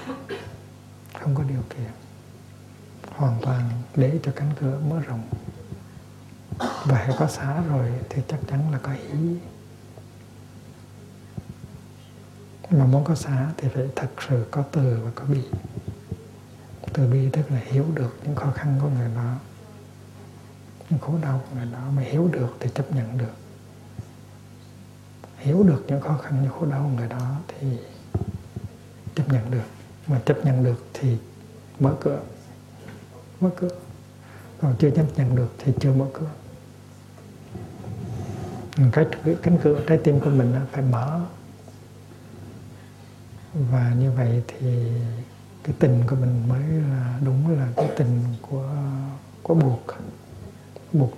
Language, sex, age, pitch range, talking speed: Vietnamese, male, 60-79, 115-140 Hz, 140 wpm